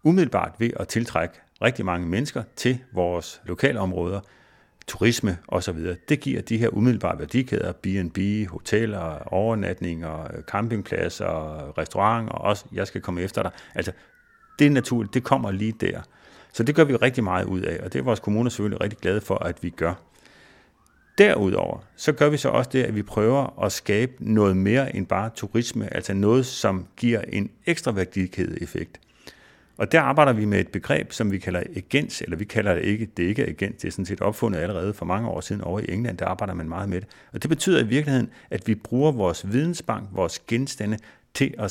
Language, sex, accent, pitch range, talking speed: Danish, male, native, 95-120 Hz, 195 wpm